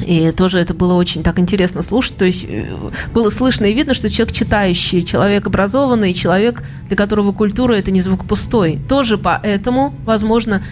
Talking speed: 175 wpm